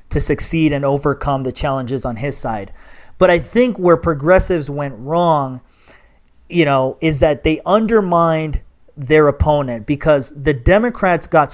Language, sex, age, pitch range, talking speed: English, male, 30-49, 140-175 Hz, 145 wpm